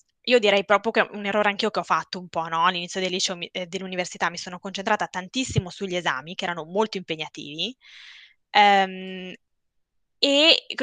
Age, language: 20-39, Italian